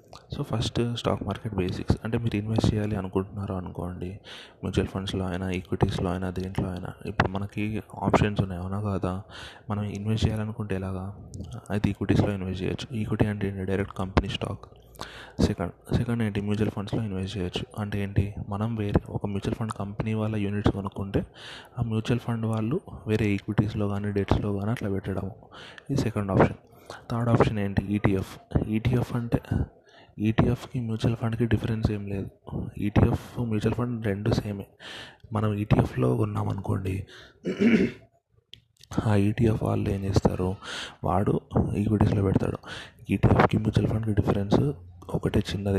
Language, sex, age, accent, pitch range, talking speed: Telugu, male, 20-39, native, 95-115 Hz, 135 wpm